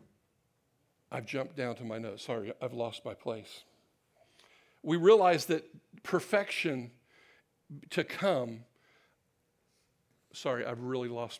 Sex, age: male, 60-79